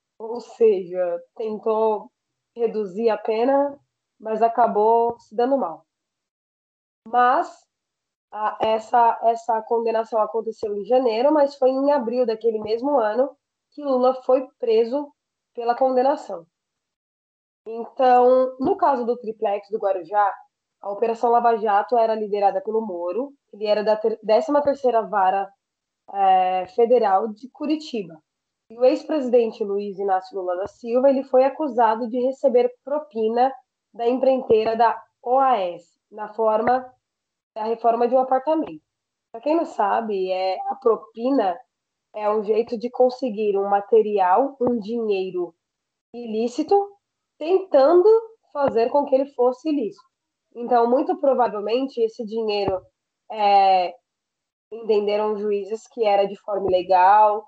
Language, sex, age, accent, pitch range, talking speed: Portuguese, female, 20-39, Brazilian, 210-260 Hz, 125 wpm